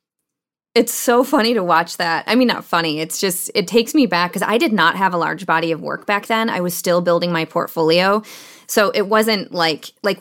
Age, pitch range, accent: 20-39, 170-225 Hz, American